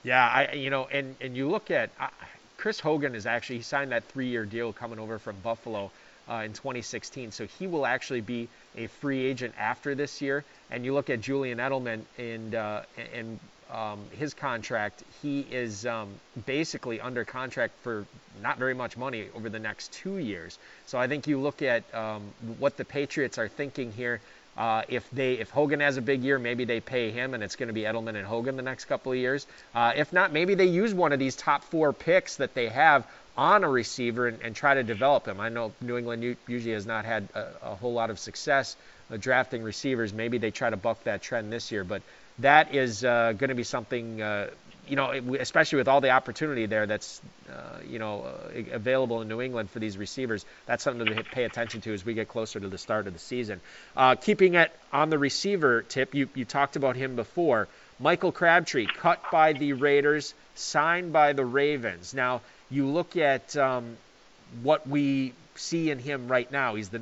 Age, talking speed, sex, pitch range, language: 30-49, 215 wpm, male, 115-140 Hz, English